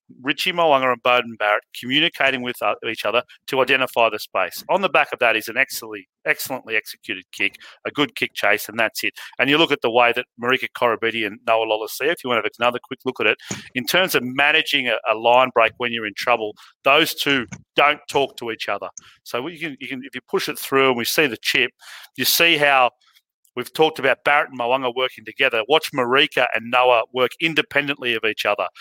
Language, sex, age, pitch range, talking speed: English, male, 40-59, 115-145 Hz, 210 wpm